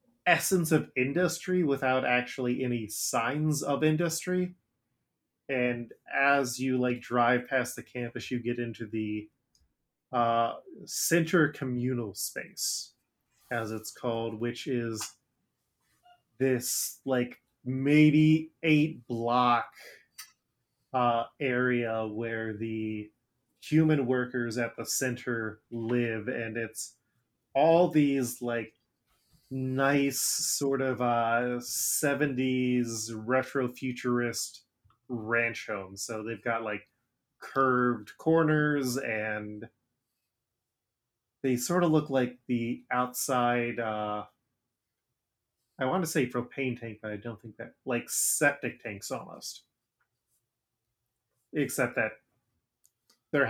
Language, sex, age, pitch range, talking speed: English, male, 20-39, 115-135 Hz, 100 wpm